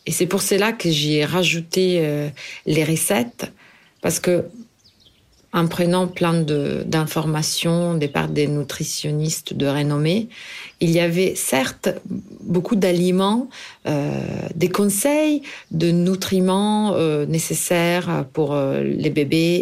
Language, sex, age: French, female, 40-59